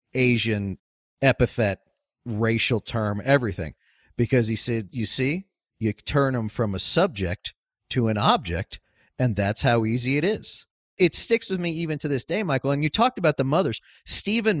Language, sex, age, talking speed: English, male, 40-59, 170 wpm